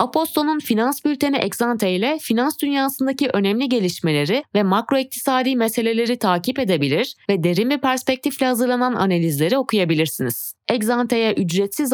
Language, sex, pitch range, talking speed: Turkish, female, 175-255 Hz, 110 wpm